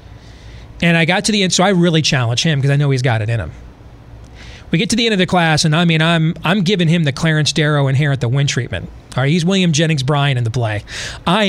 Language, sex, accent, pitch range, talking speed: English, male, American, 130-175 Hz, 270 wpm